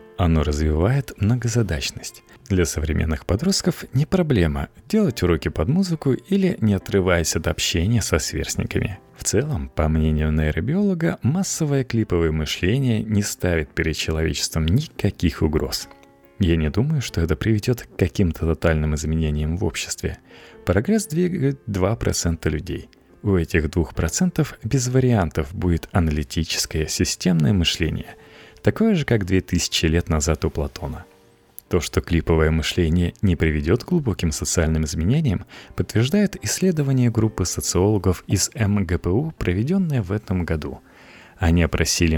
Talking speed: 125 wpm